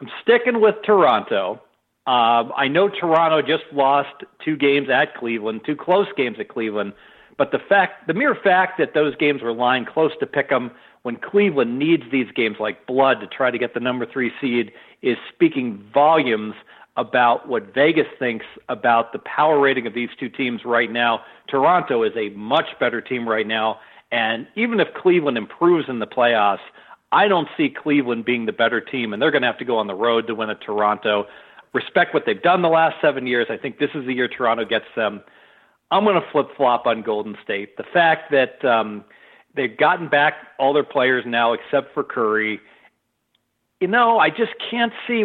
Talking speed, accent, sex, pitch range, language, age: 200 wpm, American, male, 115-175 Hz, English, 50-69